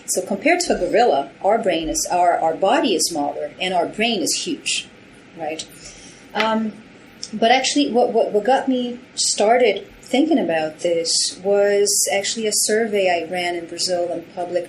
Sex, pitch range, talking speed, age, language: female, 170-225 Hz, 170 wpm, 30-49, English